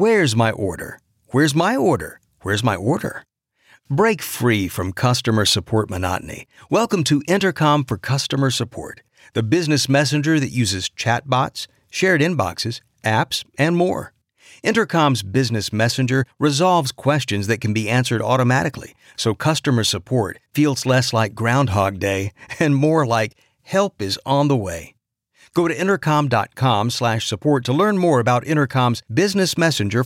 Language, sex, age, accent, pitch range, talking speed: English, male, 50-69, American, 110-145 Hz, 140 wpm